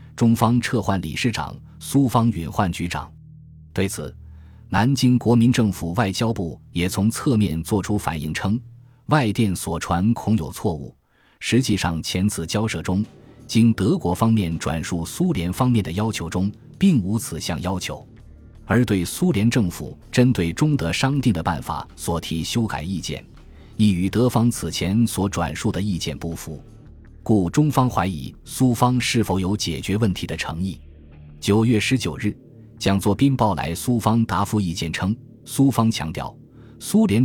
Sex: male